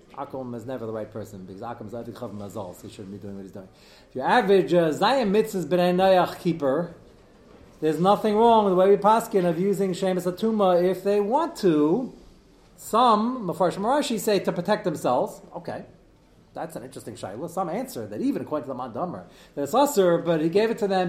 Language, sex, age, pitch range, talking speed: English, male, 40-59, 135-180 Hz, 200 wpm